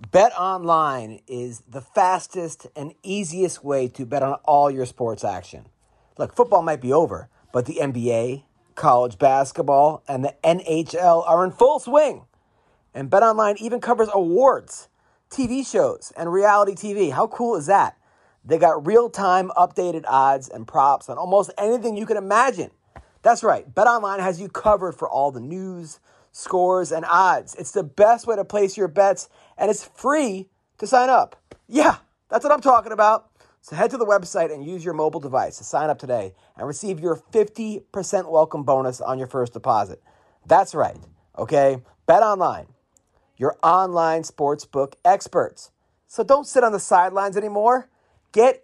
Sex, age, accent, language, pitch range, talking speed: male, 30-49, American, English, 145-215 Hz, 165 wpm